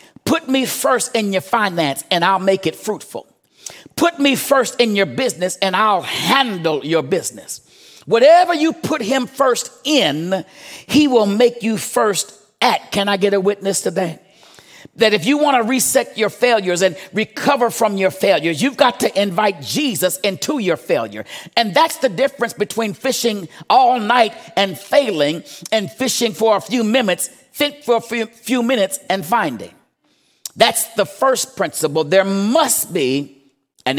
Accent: American